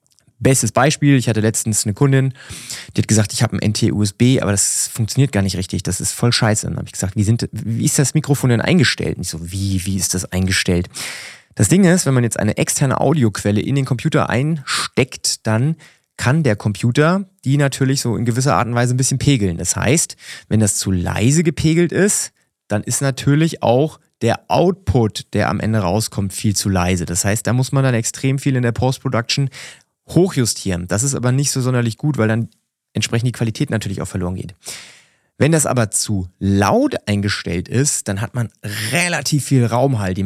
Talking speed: 200 wpm